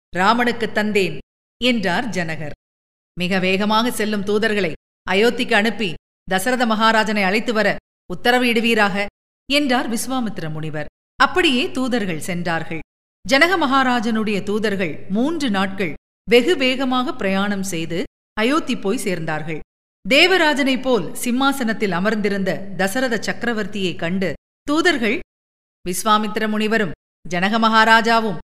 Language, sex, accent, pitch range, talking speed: Tamil, female, native, 195-255 Hz, 95 wpm